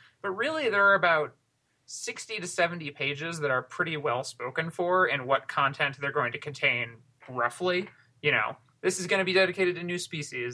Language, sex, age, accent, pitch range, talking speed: English, male, 20-39, American, 125-165 Hz, 195 wpm